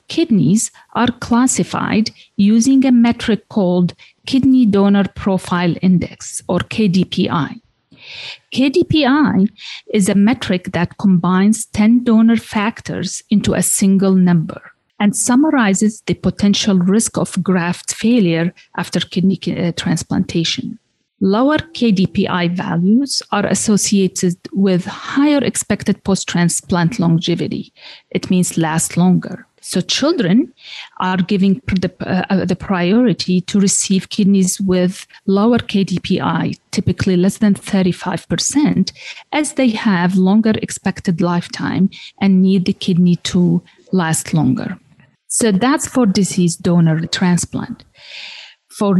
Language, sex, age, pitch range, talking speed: English, female, 40-59, 180-225 Hz, 110 wpm